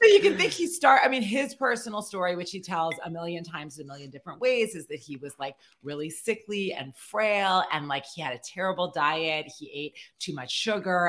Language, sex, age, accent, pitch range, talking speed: English, female, 30-49, American, 145-195 Hz, 225 wpm